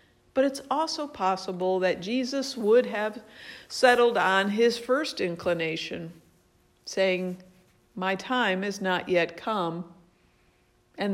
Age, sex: 50-69, female